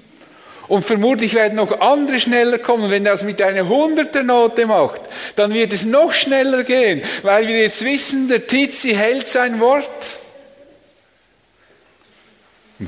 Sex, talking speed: male, 145 wpm